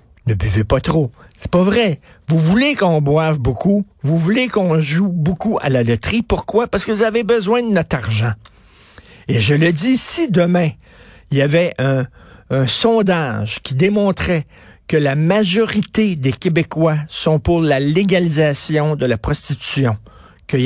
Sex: male